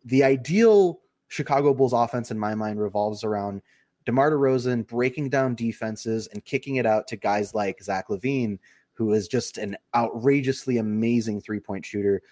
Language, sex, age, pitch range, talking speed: English, male, 20-39, 105-130 Hz, 155 wpm